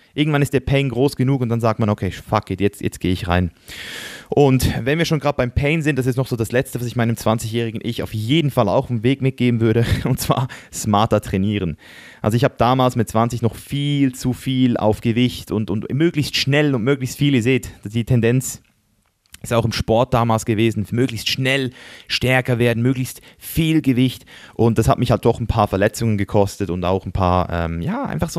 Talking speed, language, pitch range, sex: 220 wpm, German, 110-135 Hz, male